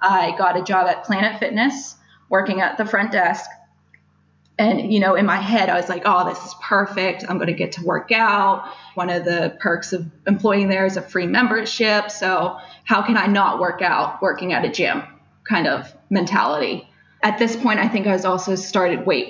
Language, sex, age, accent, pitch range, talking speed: English, female, 20-39, American, 180-210 Hz, 210 wpm